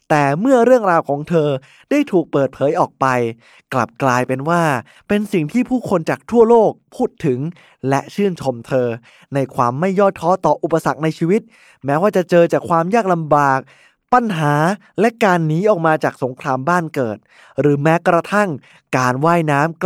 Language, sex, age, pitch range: Thai, male, 20-39, 140-195 Hz